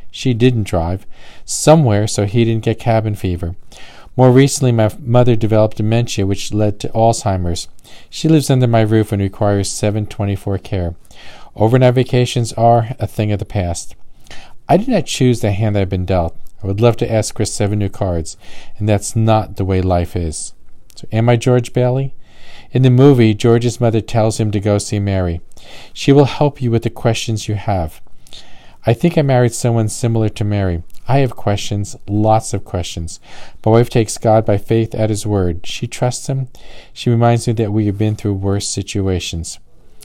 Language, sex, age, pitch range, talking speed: English, male, 40-59, 100-120 Hz, 185 wpm